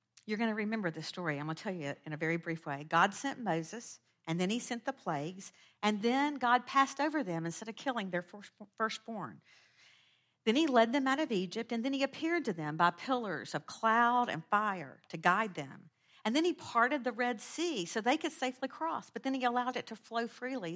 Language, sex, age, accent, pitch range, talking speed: English, female, 50-69, American, 165-255 Hz, 225 wpm